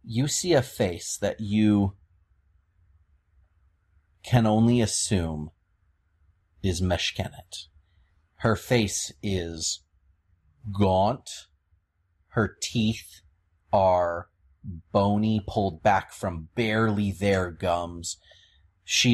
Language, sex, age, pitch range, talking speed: English, male, 30-49, 85-110 Hz, 80 wpm